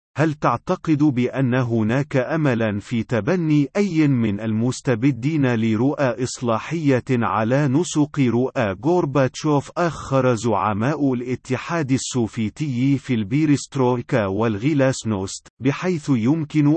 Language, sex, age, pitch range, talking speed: Arabic, male, 40-59, 115-145 Hz, 95 wpm